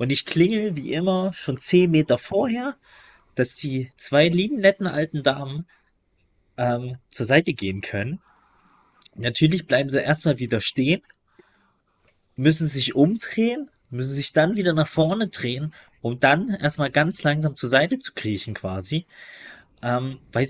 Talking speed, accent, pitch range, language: 145 wpm, German, 120-160 Hz, German